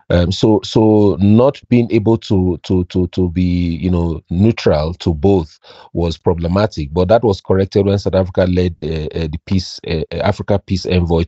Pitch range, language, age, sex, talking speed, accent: 85-100 Hz, English, 40-59, male, 175 wpm, Nigerian